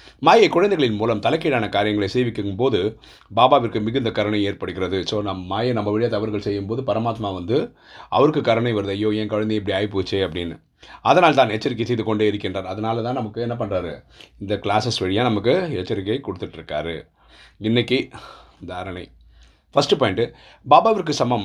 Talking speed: 145 wpm